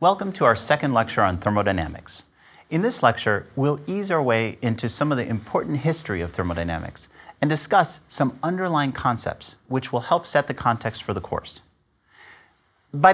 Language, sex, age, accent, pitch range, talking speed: English, male, 30-49, American, 105-145 Hz, 170 wpm